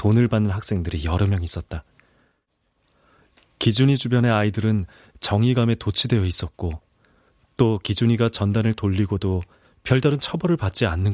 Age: 30-49